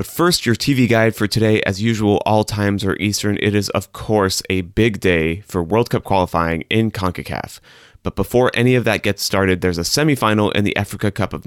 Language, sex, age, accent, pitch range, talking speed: English, male, 30-49, American, 90-110 Hz, 215 wpm